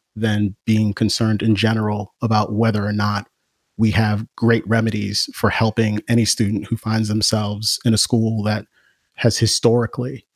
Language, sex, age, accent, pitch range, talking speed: English, male, 30-49, American, 105-115 Hz, 150 wpm